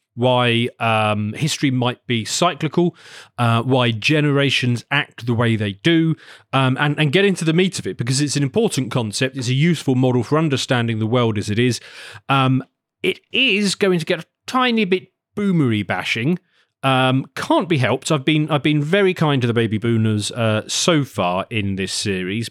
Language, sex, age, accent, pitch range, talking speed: English, male, 30-49, British, 115-155 Hz, 185 wpm